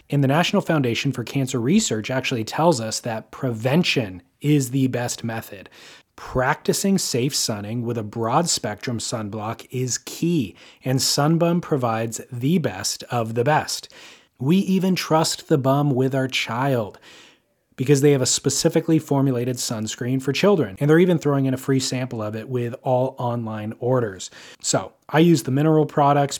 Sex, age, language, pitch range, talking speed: male, 30-49, English, 120-150 Hz, 160 wpm